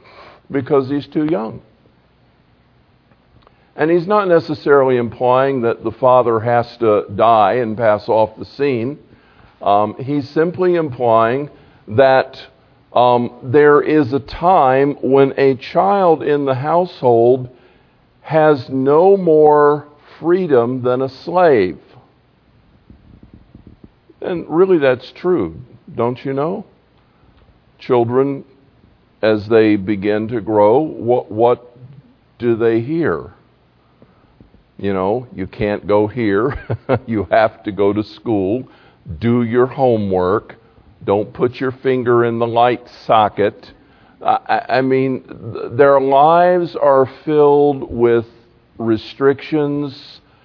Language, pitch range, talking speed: English, 115-140 Hz, 110 wpm